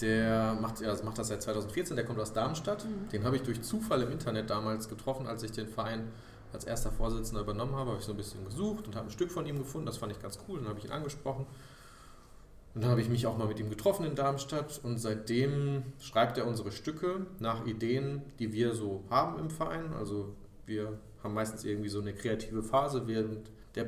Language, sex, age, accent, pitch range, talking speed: German, male, 30-49, German, 110-135 Hz, 225 wpm